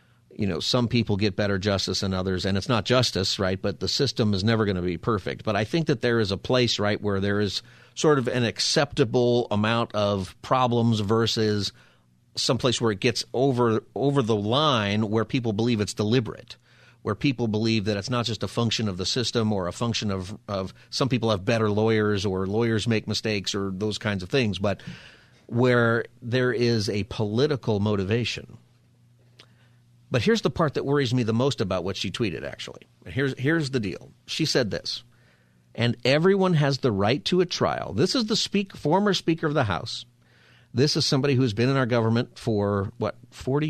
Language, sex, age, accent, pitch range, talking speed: English, male, 40-59, American, 105-130 Hz, 200 wpm